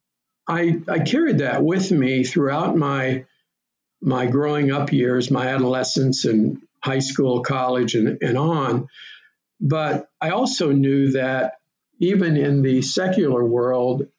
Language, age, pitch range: English, 50-69, 130-150 Hz